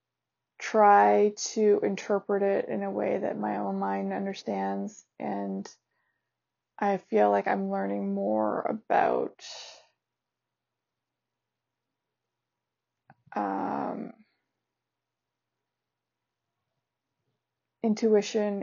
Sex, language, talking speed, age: female, English, 70 wpm, 20-39